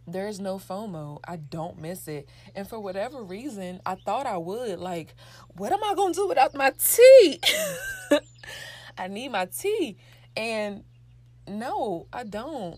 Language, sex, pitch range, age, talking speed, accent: English, female, 155-205 Hz, 20-39, 160 wpm, American